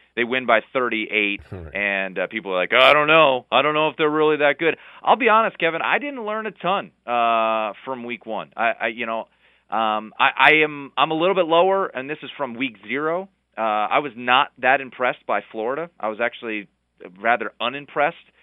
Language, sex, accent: English, male, American